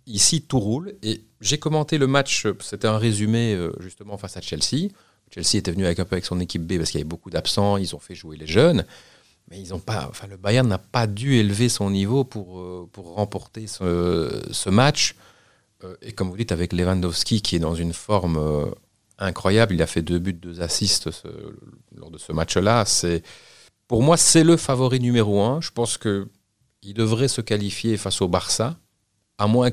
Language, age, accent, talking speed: French, 40-59, French, 200 wpm